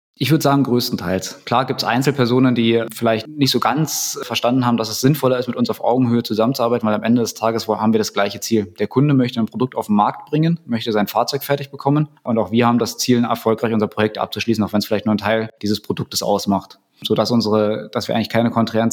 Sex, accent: male, German